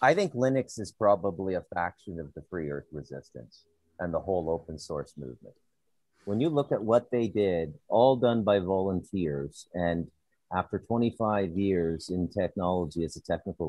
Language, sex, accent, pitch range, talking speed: English, male, American, 80-105 Hz, 165 wpm